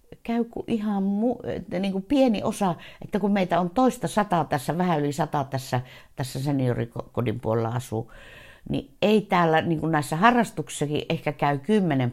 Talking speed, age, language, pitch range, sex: 165 wpm, 60-79, Finnish, 130-185 Hz, female